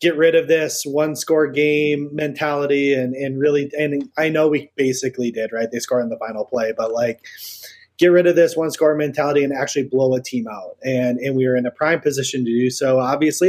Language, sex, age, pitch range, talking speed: English, male, 30-49, 125-150 Hz, 225 wpm